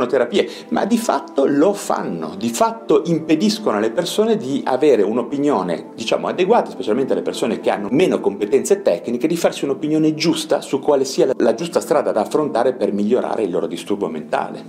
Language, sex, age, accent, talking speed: Italian, male, 40-59, native, 170 wpm